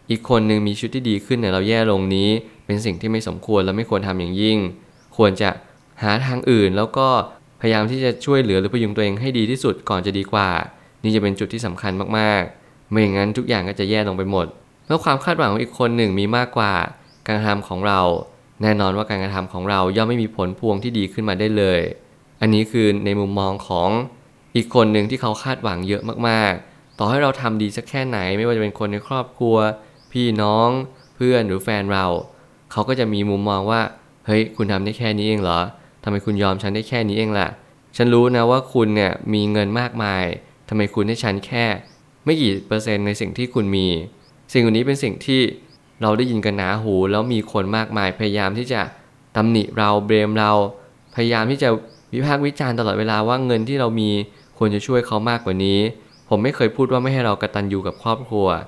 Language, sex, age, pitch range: Thai, male, 20-39, 100-120 Hz